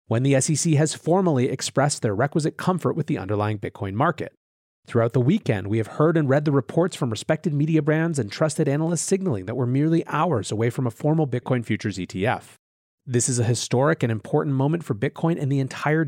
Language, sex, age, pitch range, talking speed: English, male, 30-49, 120-155 Hz, 205 wpm